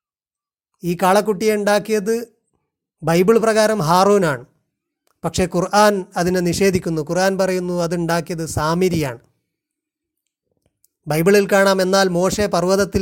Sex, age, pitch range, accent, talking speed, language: male, 30-49, 170-195 Hz, native, 90 wpm, Malayalam